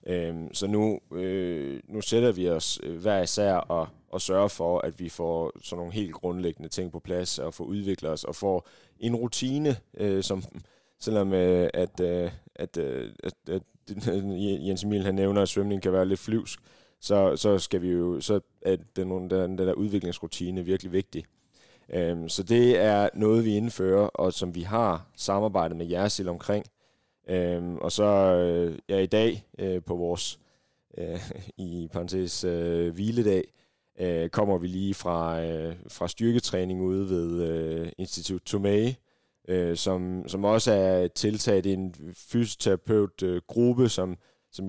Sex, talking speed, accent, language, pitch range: male, 165 wpm, native, Danish, 85-100 Hz